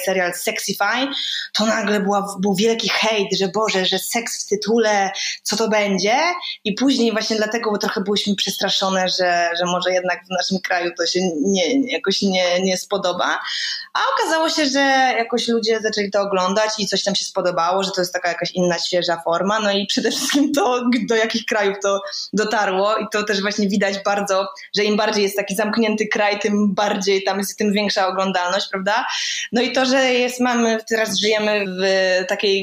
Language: Polish